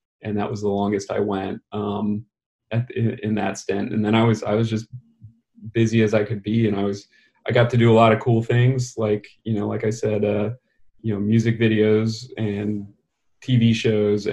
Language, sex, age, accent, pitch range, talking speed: English, male, 30-49, American, 105-115 Hz, 210 wpm